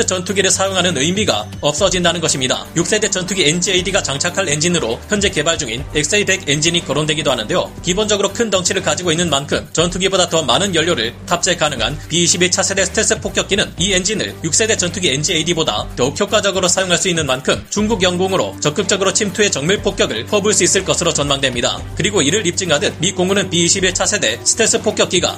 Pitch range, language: 160-200 Hz, Korean